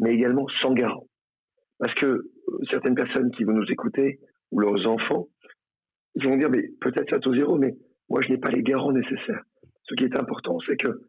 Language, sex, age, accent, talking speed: French, male, 40-59, French, 205 wpm